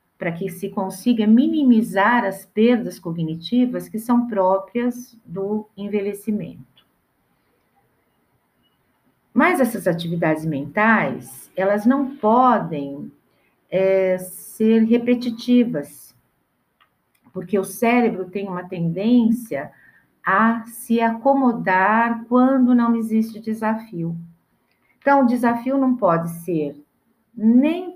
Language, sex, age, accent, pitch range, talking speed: Portuguese, female, 50-69, Brazilian, 175-240 Hz, 90 wpm